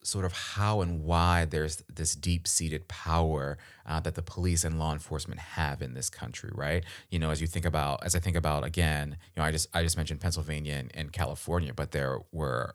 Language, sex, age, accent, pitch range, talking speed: English, male, 30-49, American, 80-95 Hz, 215 wpm